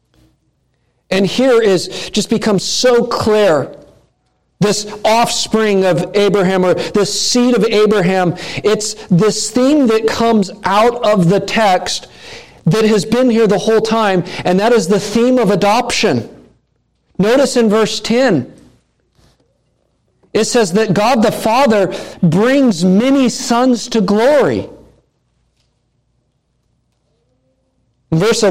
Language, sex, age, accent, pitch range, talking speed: English, male, 50-69, American, 140-215 Hz, 120 wpm